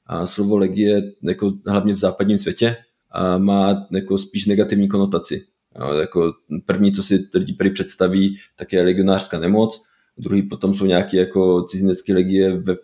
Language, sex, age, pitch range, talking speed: Czech, male, 20-39, 95-105 Hz, 150 wpm